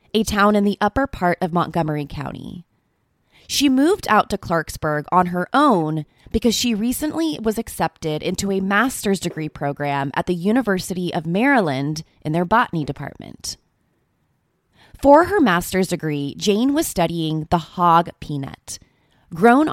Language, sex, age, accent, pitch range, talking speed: English, female, 20-39, American, 155-225 Hz, 145 wpm